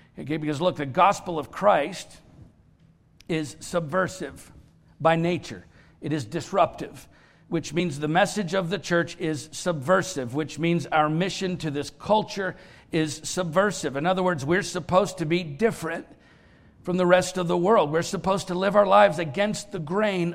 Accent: American